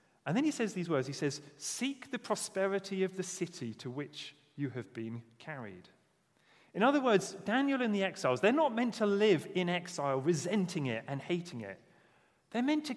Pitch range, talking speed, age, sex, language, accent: 145-210 Hz, 195 wpm, 40-59, male, English, British